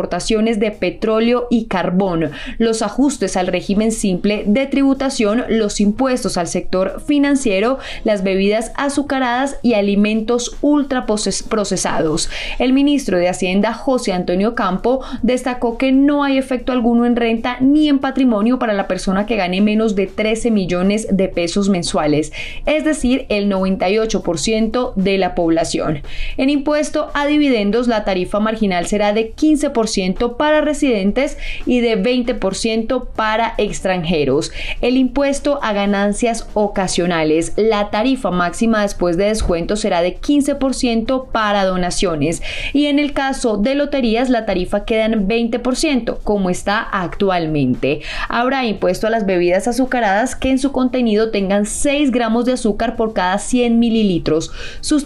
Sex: female